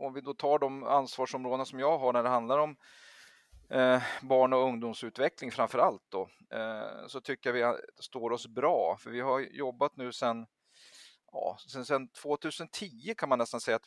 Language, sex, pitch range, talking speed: Swedish, male, 110-130 Hz, 170 wpm